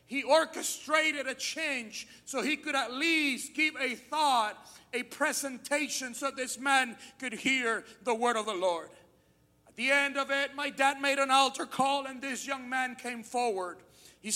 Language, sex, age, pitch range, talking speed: English, male, 40-59, 260-310 Hz, 175 wpm